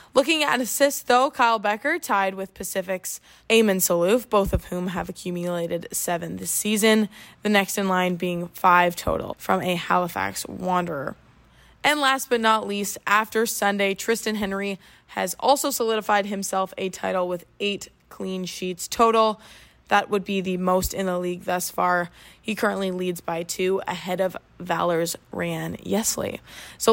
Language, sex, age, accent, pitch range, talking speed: English, female, 20-39, American, 185-235 Hz, 160 wpm